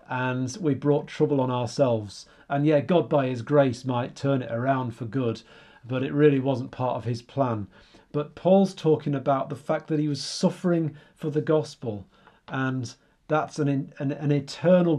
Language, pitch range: English, 130-165 Hz